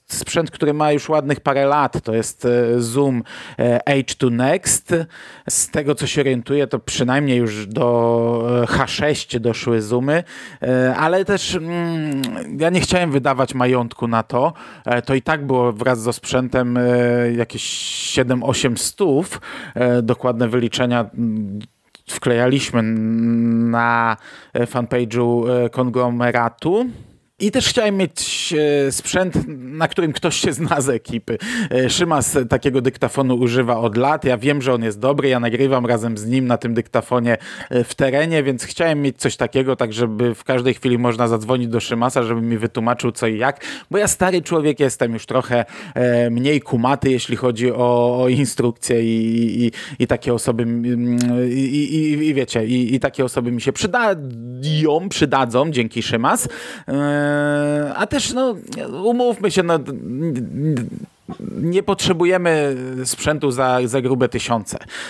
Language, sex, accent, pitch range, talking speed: Polish, male, native, 120-150 Hz, 135 wpm